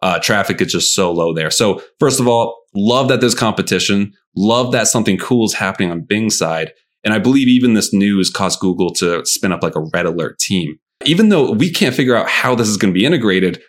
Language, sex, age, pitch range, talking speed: English, male, 30-49, 95-135 Hz, 230 wpm